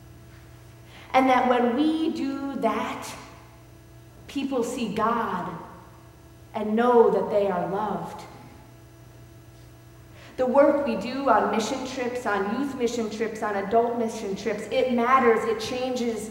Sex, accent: female, American